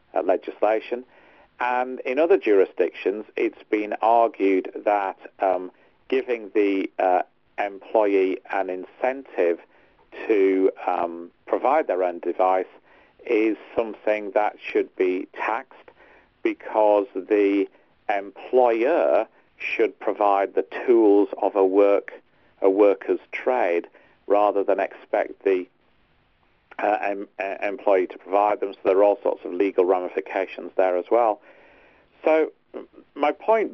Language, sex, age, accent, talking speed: English, male, 50-69, British, 110 wpm